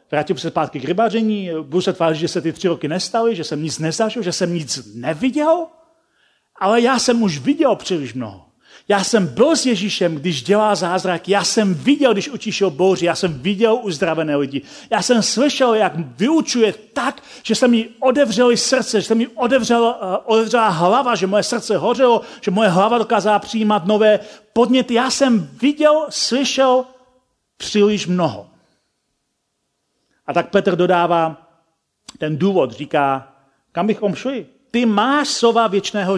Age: 40-59